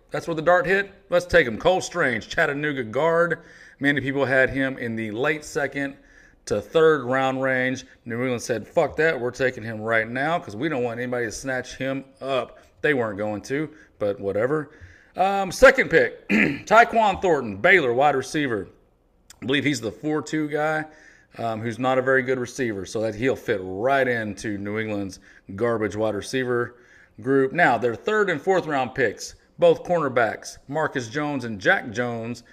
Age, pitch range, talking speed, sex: 40-59, 115-140 Hz, 175 wpm, male